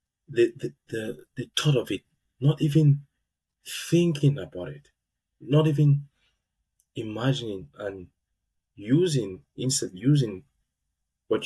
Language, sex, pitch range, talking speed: English, male, 90-135 Hz, 105 wpm